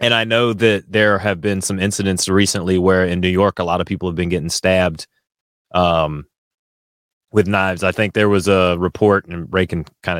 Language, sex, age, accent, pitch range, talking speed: English, male, 30-49, American, 90-115 Hz, 205 wpm